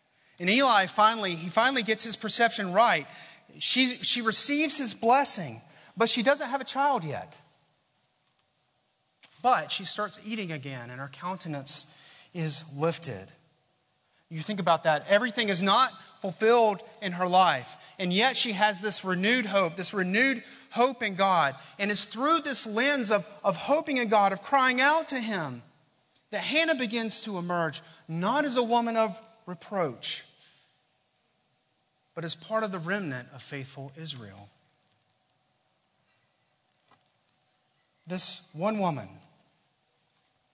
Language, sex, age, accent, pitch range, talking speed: English, male, 30-49, American, 150-215 Hz, 135 wpm